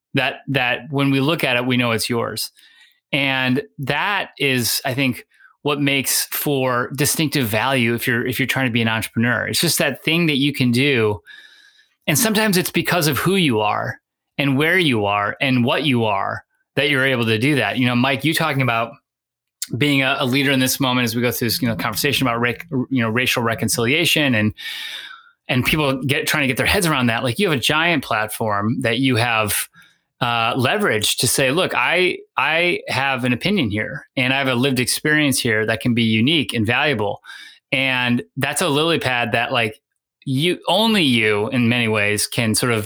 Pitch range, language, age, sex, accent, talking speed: 120-150 Hz, English, 30-49, male, American, 205 wpm